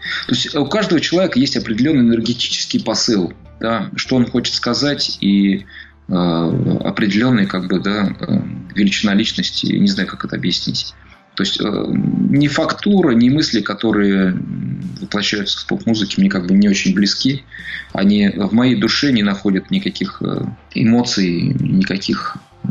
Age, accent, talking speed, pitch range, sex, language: 20-39, native, 140 wpm, 95-125 Hz, male, Russian